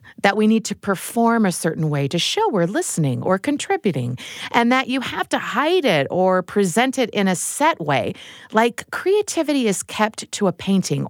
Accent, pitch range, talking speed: American, 155-230 Hz, 190 wpm